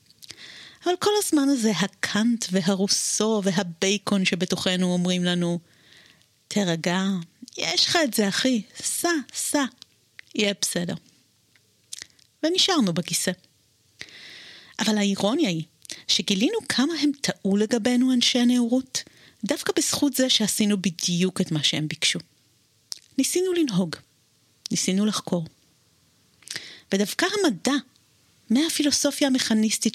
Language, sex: Hebrew, female